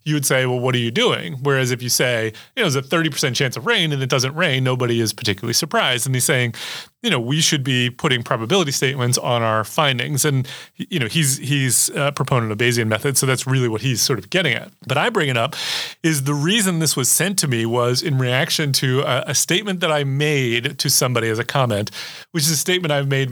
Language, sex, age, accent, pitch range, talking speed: English, male, 30-49, American, 125-150 Hz, 245 wpm